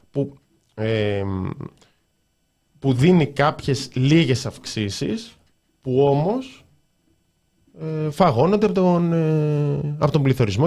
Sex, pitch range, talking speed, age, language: male, 115-165 Hz, 90 wpm, 20-39, Greek